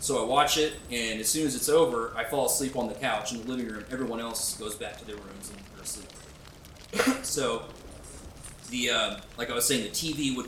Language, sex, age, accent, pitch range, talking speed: English, male, 20-39, American, 115-150 Hz, 230 wpm